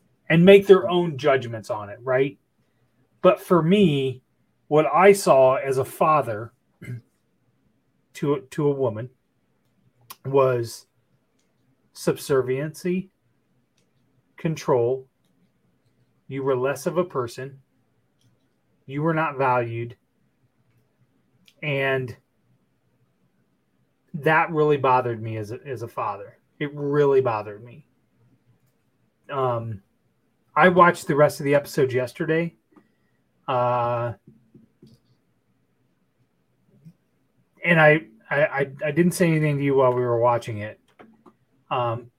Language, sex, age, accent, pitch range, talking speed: English, male, 30-49, American, 120-150 Hz, 105 wpm